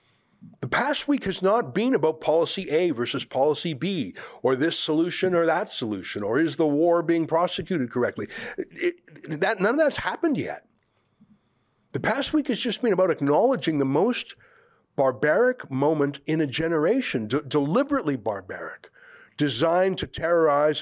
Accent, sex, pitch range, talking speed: American, male, 140-225 Hz, 145 wpm